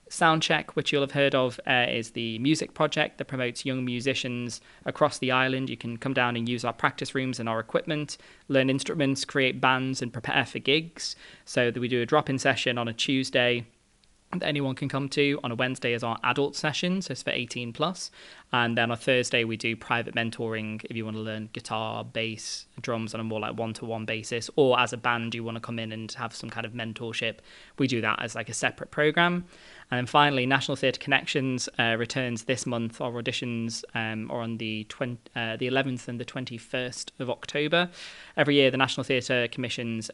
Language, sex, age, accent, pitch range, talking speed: English, male, 20-39, British, 115-135 Hz, 210 wpm